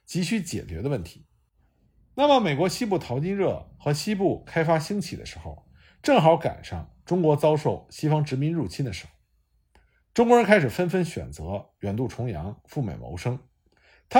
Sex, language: male, Chinese